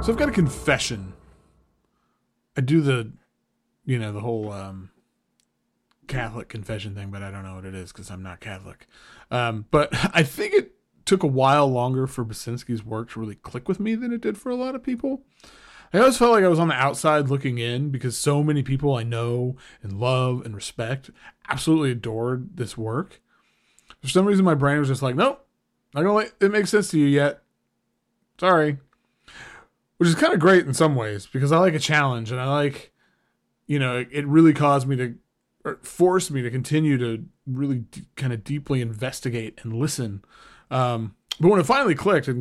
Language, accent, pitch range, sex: English, American, 115-155 Hz, male